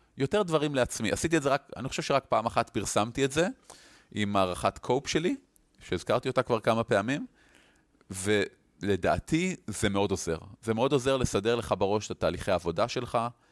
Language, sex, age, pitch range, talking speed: Hebrew, male, 30-49, 100-125 Hz, 170 wpm